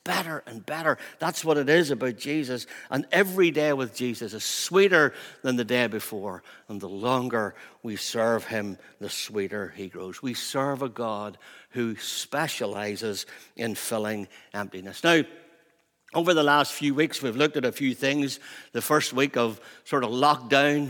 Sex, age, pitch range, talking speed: male, 60-79, 120-150 Hz, 165 wpm